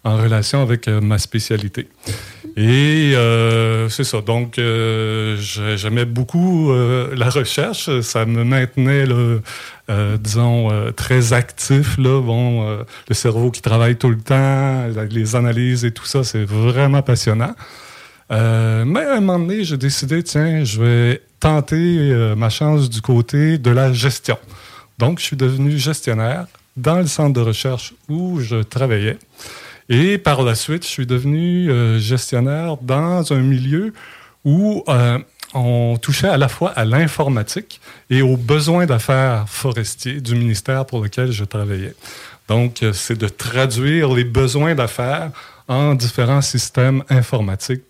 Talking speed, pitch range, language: 150 wpm, 115-140 Hz, French